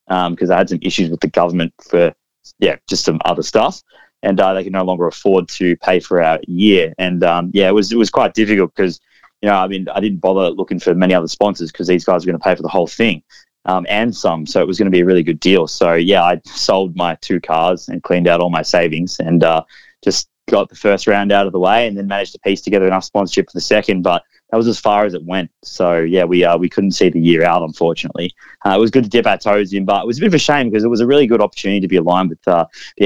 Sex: male